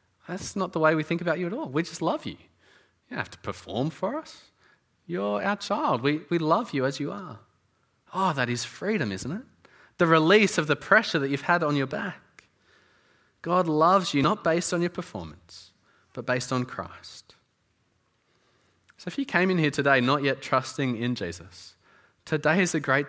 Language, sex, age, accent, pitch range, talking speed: English, male, 30-49, Australian, 125-170 Hz, 200 wpm